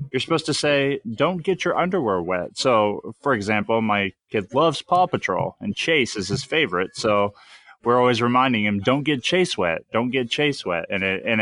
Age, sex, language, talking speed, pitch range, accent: 20-39, male, English, 200 wpm, 105-145 Hz, American